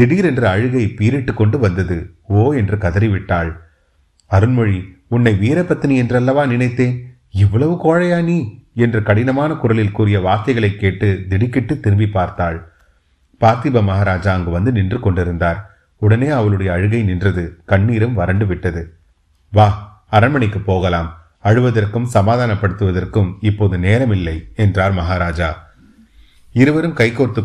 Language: Tamil